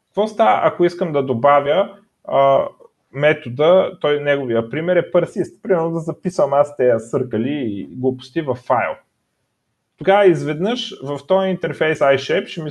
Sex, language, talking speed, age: male, Bulgarian, 125 wpm, 30-49